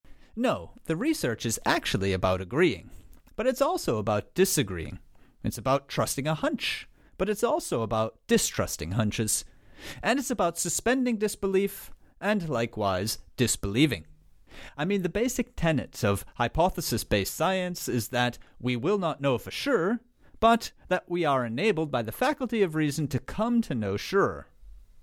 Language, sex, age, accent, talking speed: English, male, 30-49, American, 150 wpm